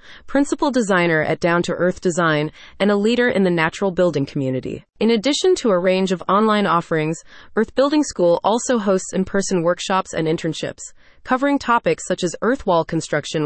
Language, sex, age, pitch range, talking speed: English, female, 30-49, 170-225 Hz, 175 wpm